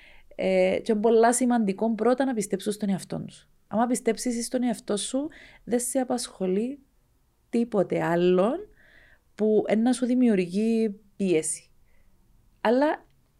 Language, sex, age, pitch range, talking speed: Greek, female, 30-49, 195-255 Hz, 120 wpm